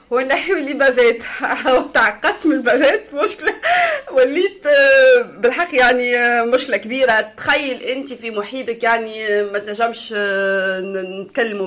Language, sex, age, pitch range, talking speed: Arabic, female, 20-39, 205-270 Hz, 105 wpm